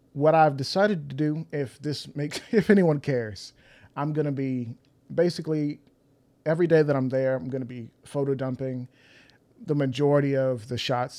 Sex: male